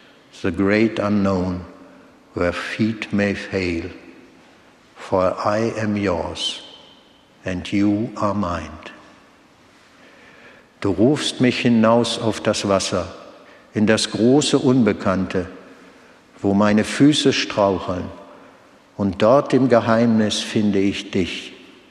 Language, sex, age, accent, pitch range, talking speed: German, male, 60-79, German, 95-115 Hz, 100 wpm